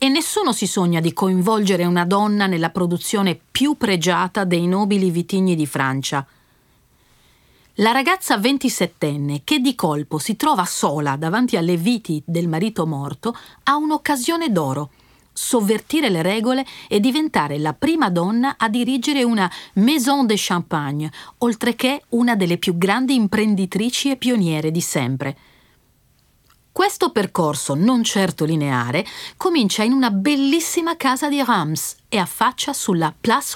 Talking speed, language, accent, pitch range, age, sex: 135 wpm, Italian, native, 165-255 Hz, 40-59, female